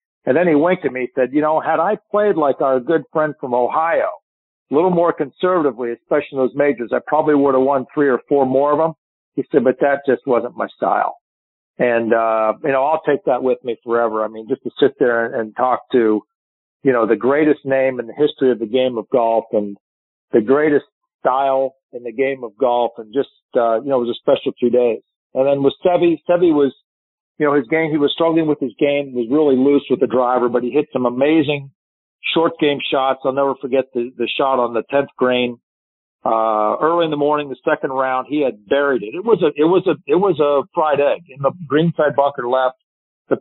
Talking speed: 230 wpm